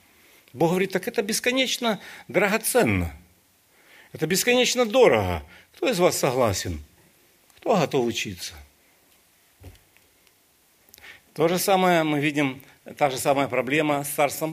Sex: male